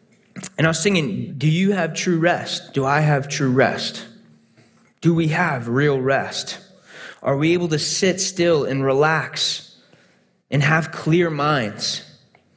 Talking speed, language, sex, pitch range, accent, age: 150 wpm, English, male, 120-170 Hz, American, 20-39